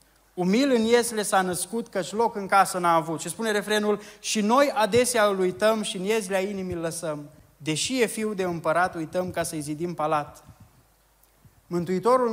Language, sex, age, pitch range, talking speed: Romanian, male, 20-39, 175-215 Hz, 175 wpm